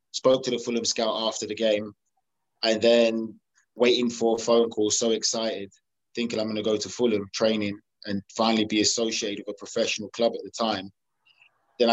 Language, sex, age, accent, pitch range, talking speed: English, male, 20-39, British, 105-120 Hz, 185 wpm